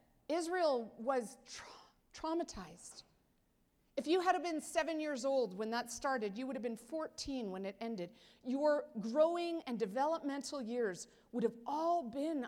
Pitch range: 200-270 Hz